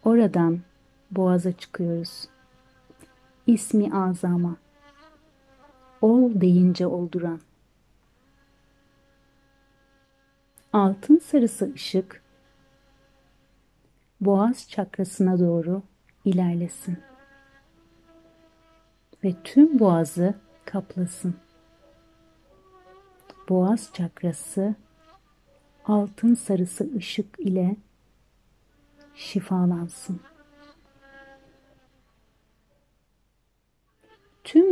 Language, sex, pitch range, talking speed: Turkish, female, 180-270 Hz, 45 wpm